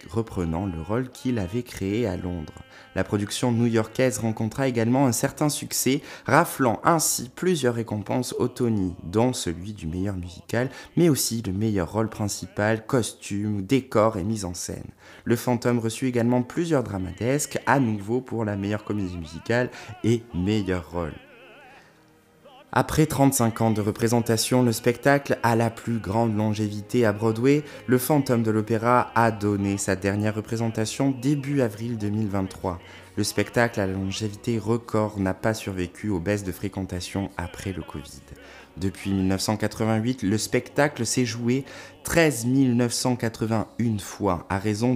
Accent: French